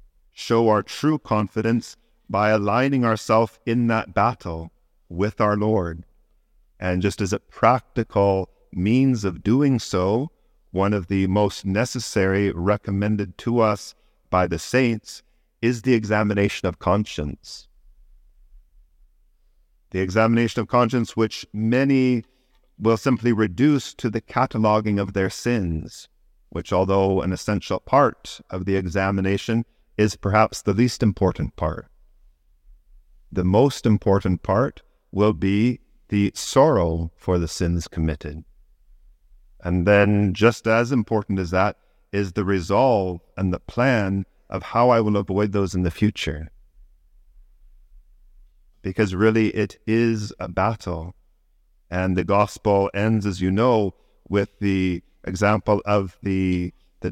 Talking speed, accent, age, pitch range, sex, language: 125 wpm, American, 50-69, 90-110 Hz, male, English